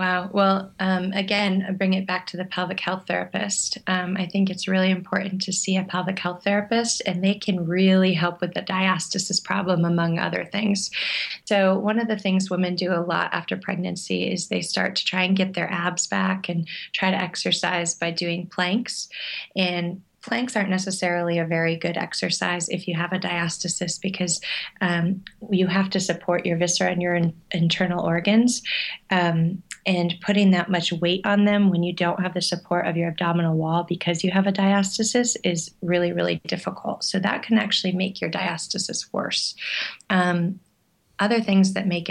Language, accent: English, American